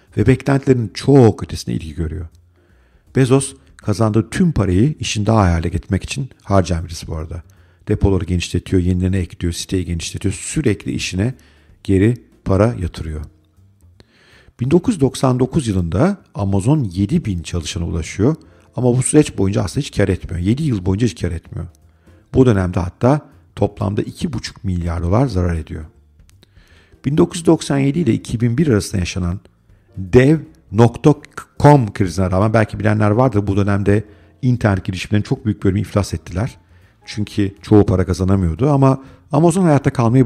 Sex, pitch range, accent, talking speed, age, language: male, 90-120 Hz, native, 130 wpm, 50-69, Turkish